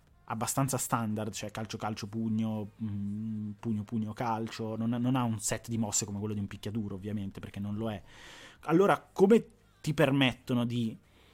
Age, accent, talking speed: 20-39, native, 145 wpm